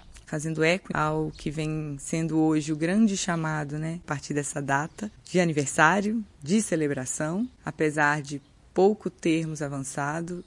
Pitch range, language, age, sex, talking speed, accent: 155-185 Hz, Portuguese, 20-39, female, 140 wpm, Brazilian